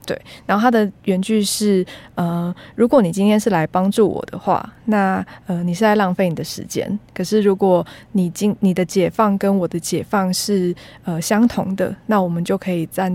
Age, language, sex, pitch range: 20-39, Chinese, female, 175-210 Hz